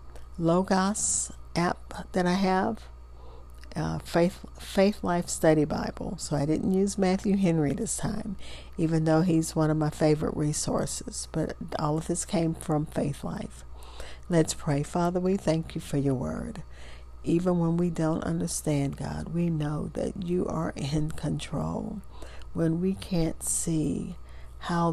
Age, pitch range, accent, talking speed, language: 50-69, 145-170 Hz, American, 150 wpm, English